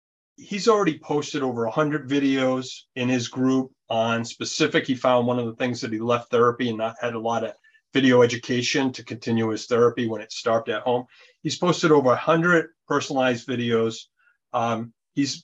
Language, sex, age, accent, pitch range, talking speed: English, male, 40-59, American, 115-135 Hz, 185 wpm